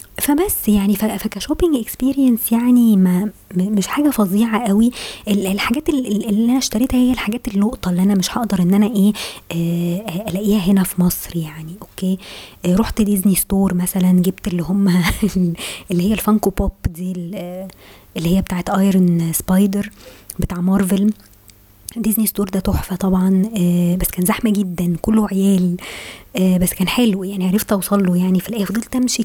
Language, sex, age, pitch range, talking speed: Arabic, male, 20-39, 180-225 Hz, 150 wpm